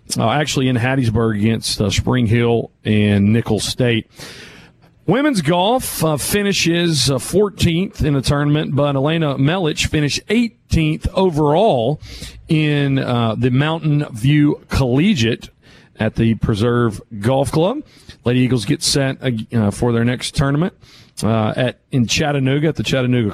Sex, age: male, 40-59